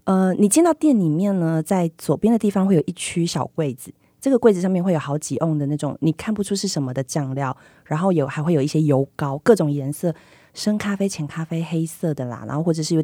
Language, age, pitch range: Chinese, 30-49, 150-200 Hz